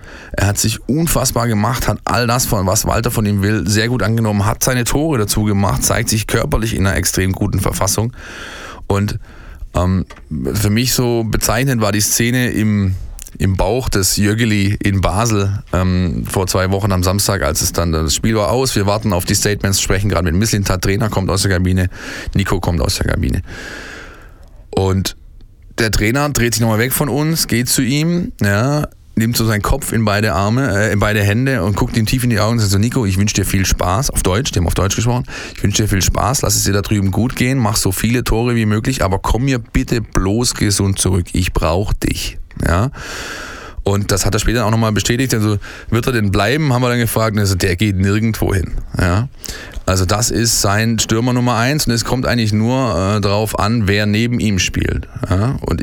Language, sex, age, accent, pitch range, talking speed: German, male, 20-39, German, 95-115 Hz, 210 wpm